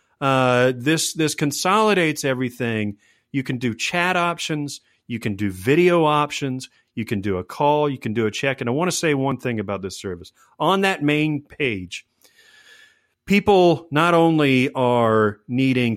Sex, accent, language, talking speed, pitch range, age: male, American, English, 165 wpm, 110-155 Hz, 40-59